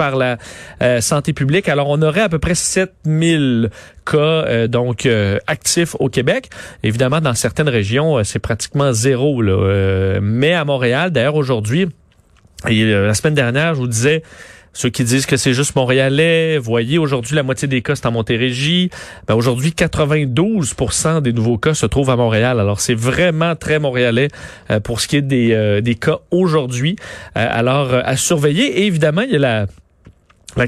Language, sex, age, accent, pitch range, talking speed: French, male, 30-49, Canadian, 120-165 Hz, 185 wpm